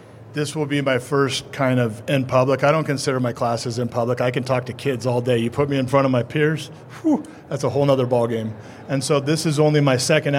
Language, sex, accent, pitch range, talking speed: English, male, American, 125-140 Hz, 260 wpm